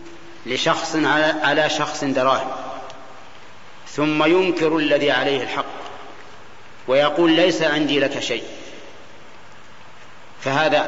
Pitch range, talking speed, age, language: 140-165 Hz, 85 wpm, 40-59, Arabic